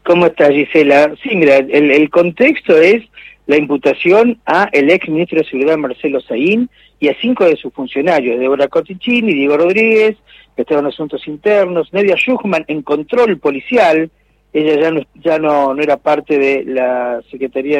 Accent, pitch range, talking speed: Argentinian, 145-210 Hz, 170 wpm